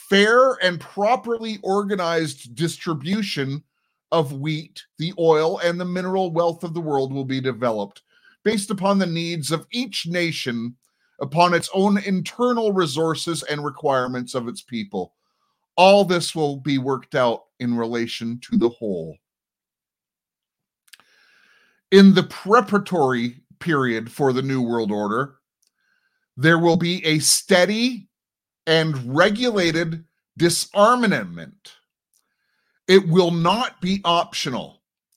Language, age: English, 30-49